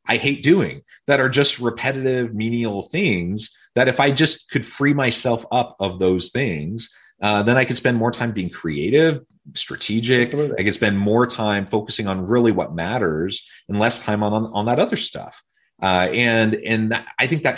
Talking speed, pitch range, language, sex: 190 wpm, 90-120 Hz, English, male